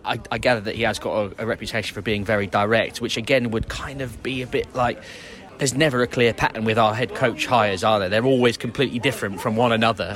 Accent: British